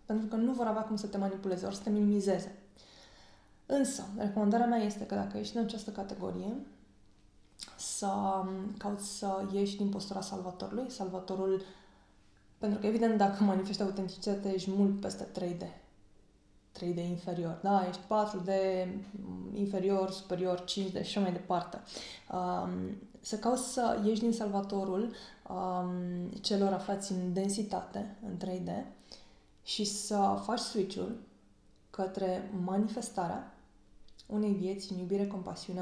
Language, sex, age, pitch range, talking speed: Romanian, female, 20-39, 180-210 Hz, 125 wpm